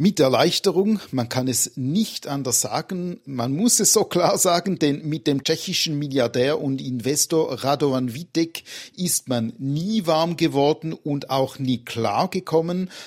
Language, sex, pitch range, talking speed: German, male, 125-165 Hz, 150 wpm